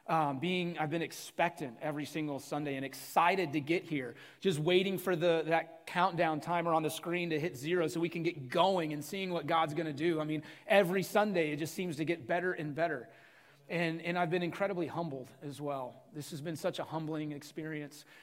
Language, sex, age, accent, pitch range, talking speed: English, male, 30-49, American, 145-170 Hz, 215 wpm